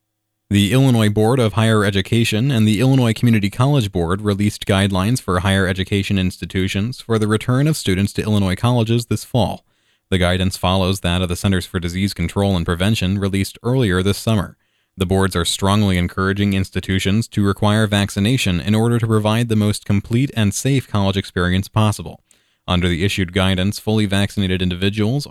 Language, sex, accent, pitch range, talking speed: English, male, American, 95-110 Hz, 170 wpm